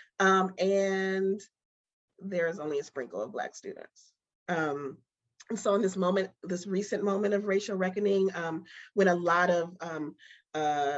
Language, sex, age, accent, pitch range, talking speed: English, female, 30-49, American, 165-195 Hz, 160 wpm